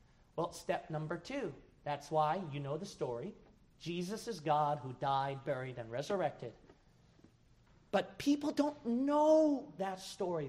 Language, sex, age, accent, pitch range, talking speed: English, male, 40-59, American, 140-190 Hz, 135 wpm